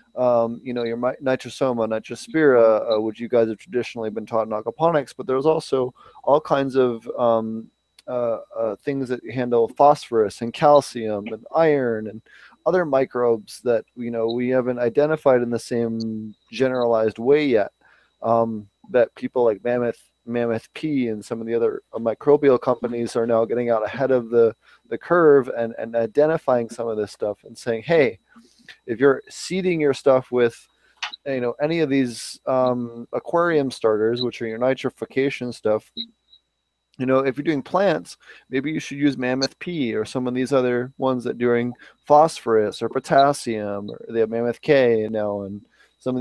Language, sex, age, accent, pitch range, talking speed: English, male, 20-39, American, 115-135 Hz, 175 wpm